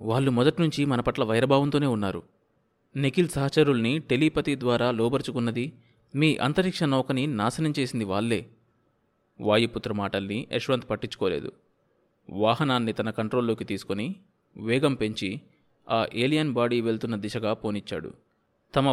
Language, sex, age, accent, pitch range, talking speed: Telugu, male, 20-39, native, 110-140 Hz, 100 wpm